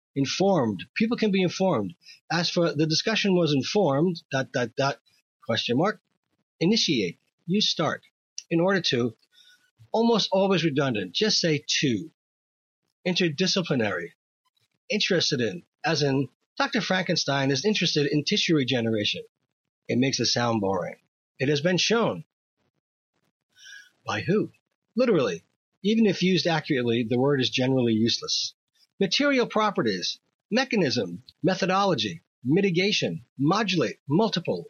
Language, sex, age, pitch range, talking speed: English, male, 40-59, 125-190 Hz, 120 wpm